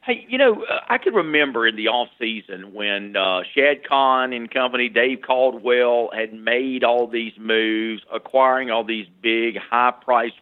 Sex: male